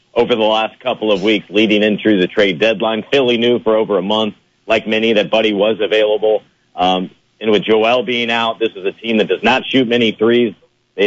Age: 40-59